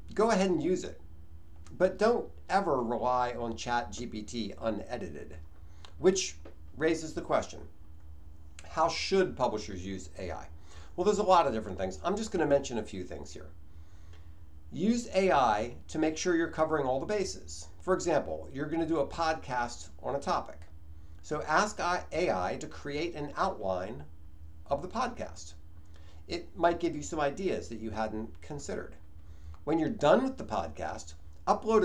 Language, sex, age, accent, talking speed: English, male, 50-69, American, 155 wpm